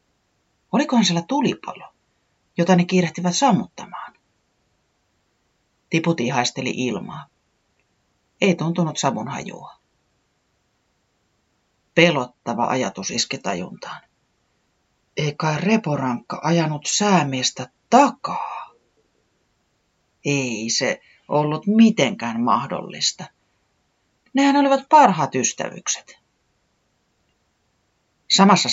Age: 40-59